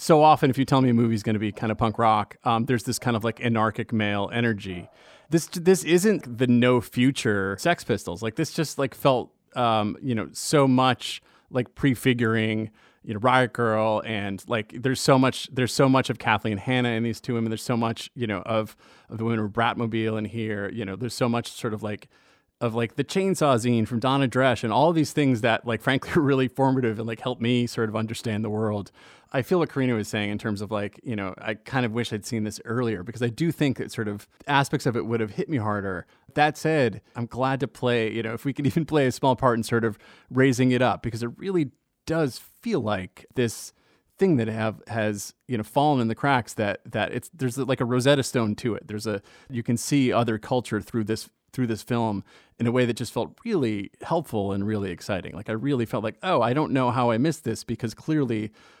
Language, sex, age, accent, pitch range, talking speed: English, male, 30-49, American, 110-130 Hz, 240 wpm